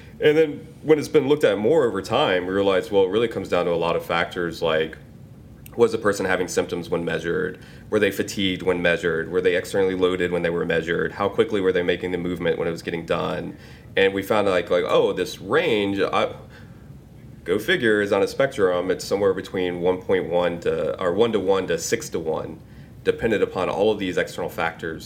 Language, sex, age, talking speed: English, male, 30-49, 220 wpm